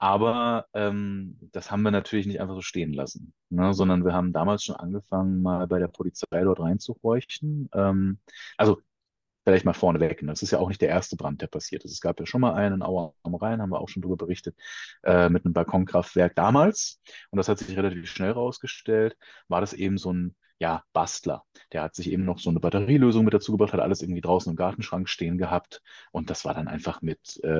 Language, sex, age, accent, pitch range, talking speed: German, male, 30-49, German, 90-105 Hz, 215 wpm